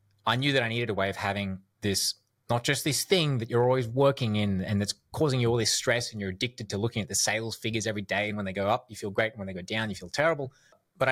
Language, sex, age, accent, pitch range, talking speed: English, male, 20-39, Australian, 95-120 Hz, 280 wpm